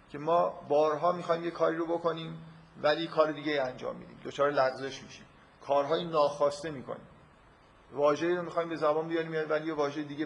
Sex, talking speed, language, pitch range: male, 180 wpm, Persian, 140-165 Hz